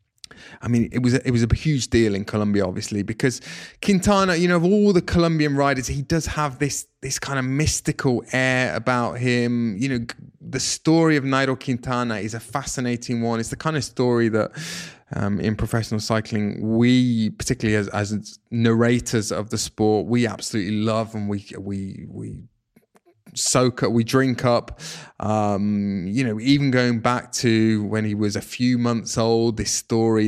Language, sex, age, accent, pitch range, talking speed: English, male, 20-39, British, 105-125 Hz, 175 wpm